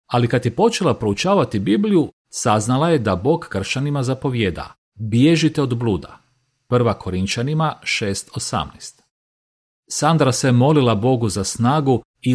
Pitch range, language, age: 105-150 Hz, Croatian, 40-59